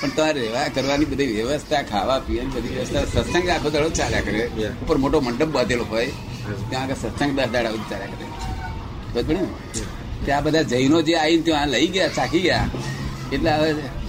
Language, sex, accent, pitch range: Gujarati, male, native, 125-165 Hz